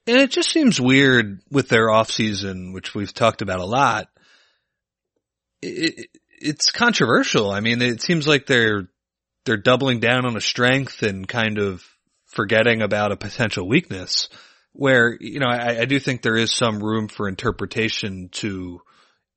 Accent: American